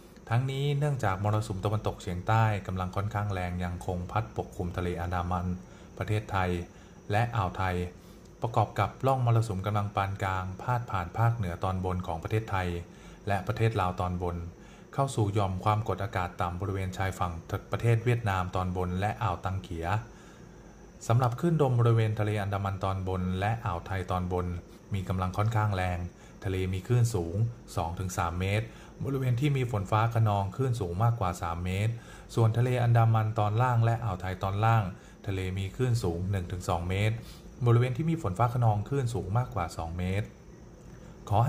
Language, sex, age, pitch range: Thai, male, 20-39, 95-115 Hz